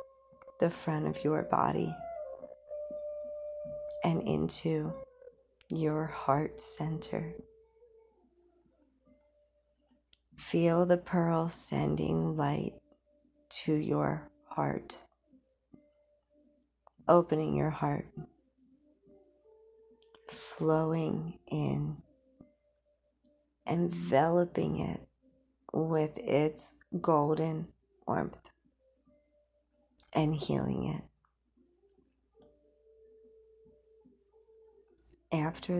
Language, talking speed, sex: English, 55 wpm, female